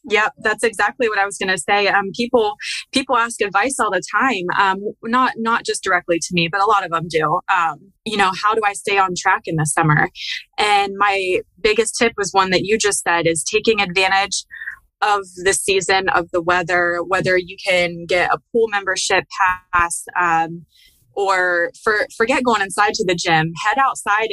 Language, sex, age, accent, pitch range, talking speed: English, female, 20-39, American, 180-220 Hz, 195 wpm